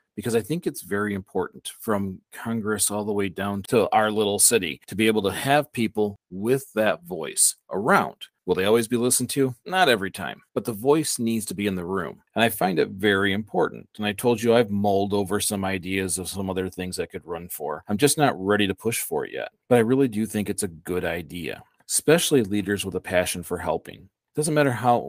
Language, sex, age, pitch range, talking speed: English, male, 40-59, 100-125 Hz, 230 wpm